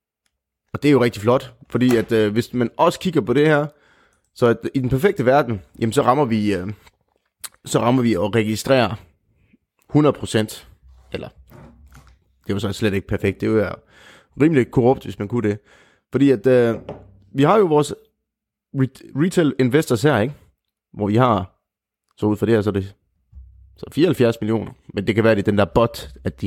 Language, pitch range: Danish, 100-130 Hz